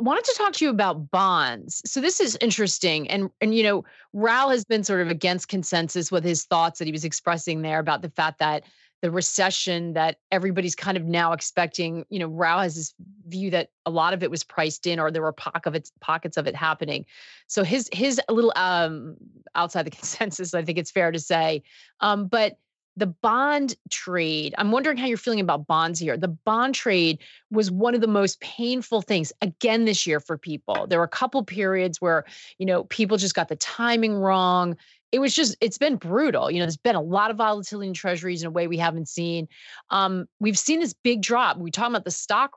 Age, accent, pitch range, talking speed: 30-49, American, 165-215 Hz, 215 wpm